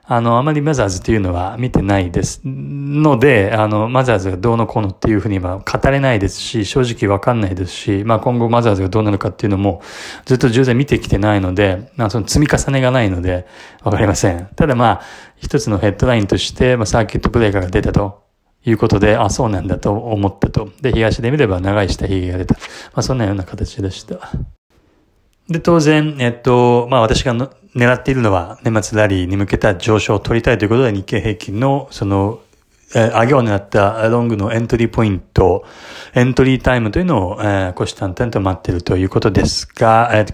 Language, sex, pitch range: Japanese, male, 100-120 Hz